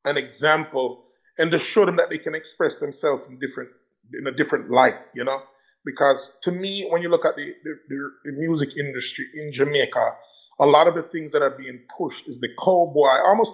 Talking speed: 205 wpm